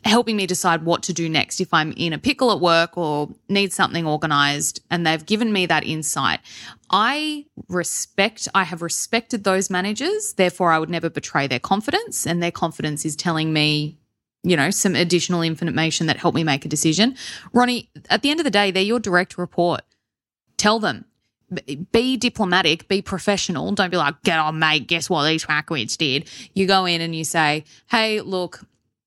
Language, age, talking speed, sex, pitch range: English, 20-39, 190 wpm, female, 155-195 Hz